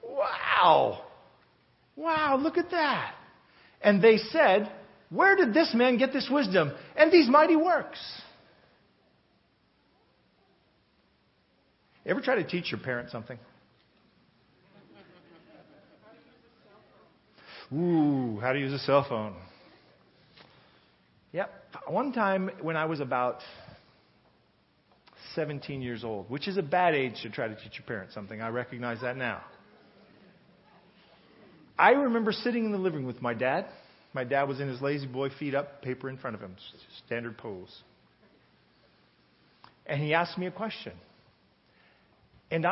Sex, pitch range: male, 125-195 Hz